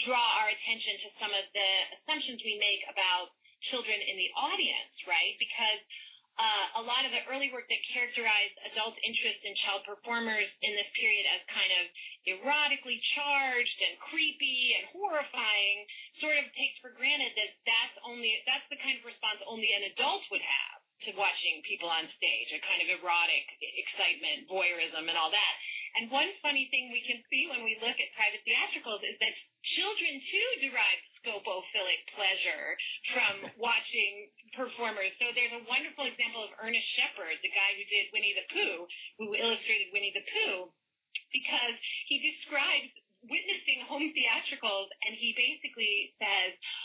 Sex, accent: female, American